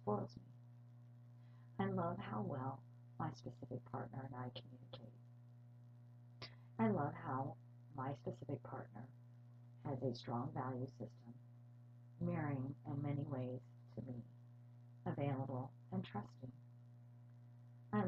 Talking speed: 105 wpm